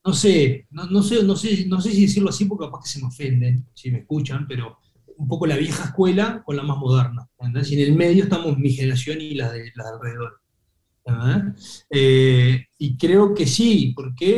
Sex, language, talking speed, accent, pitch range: male, Spanish, 210 wpm, Argentinian, 125-155 Hz